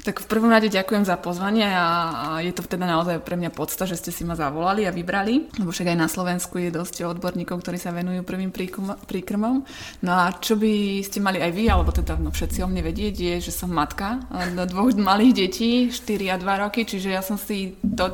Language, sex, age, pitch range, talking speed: Slovak, female, 20-39, 170-195 Hz, 225 wpm